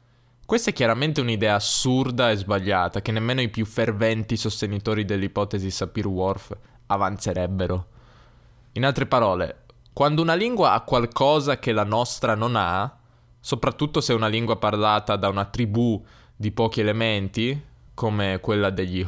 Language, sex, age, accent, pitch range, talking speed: Italian, male, 10-29, native, 105-125 Hz, 140 wpm